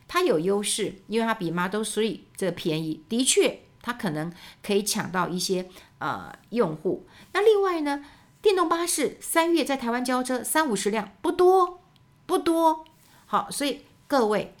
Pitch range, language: 180-255 Hz, Chinese